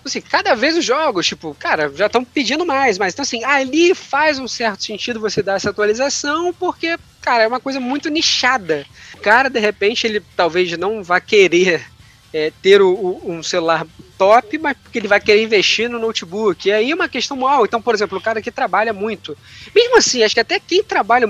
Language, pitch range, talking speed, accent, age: Portuguese, 175-275 Hz, 210 wpm, Brazilian, 20-39